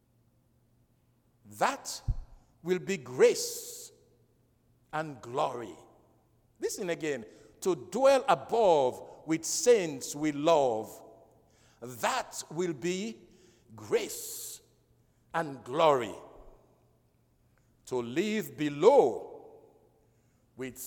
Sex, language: male, English